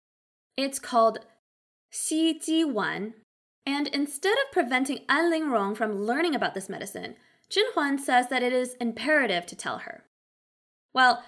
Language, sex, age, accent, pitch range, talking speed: English, female, 20-39, American, 205-310 Hz, 145 wpm